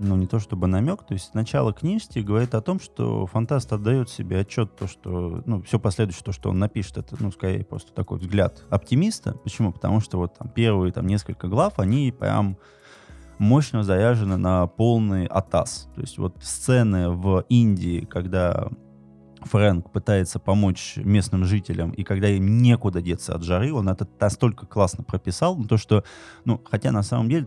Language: Russian